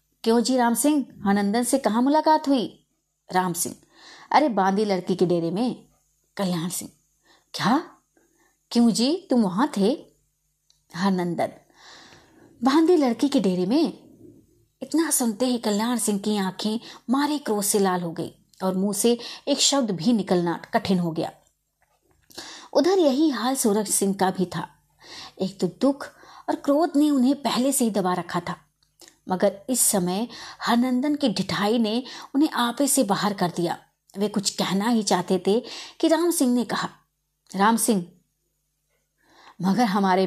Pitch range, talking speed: 185-245 Hz, 155 wpm